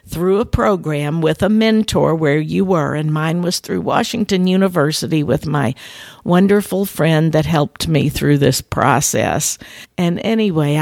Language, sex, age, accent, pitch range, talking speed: English, female, 50-69, American, 145-190 Hz, 150 wpm